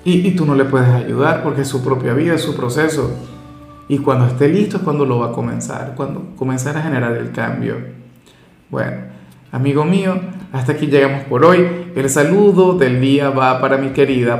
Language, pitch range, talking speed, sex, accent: Spanish, 130-165 Hz, 195 wpm, male, Venezuelan